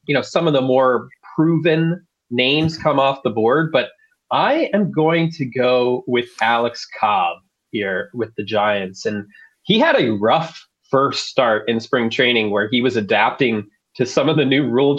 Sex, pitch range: male, 110-140 Hz